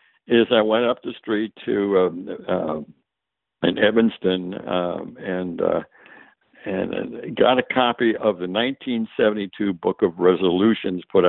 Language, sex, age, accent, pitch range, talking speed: English, male, 60-79, American, 90-120 Hz, 155 wpm